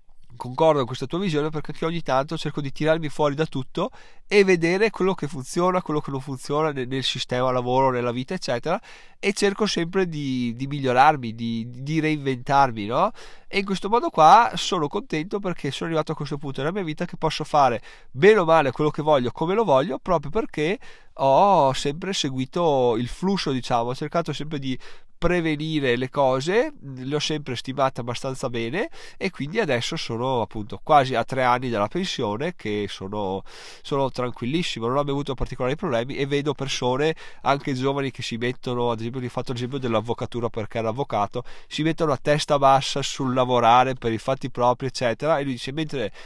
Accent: native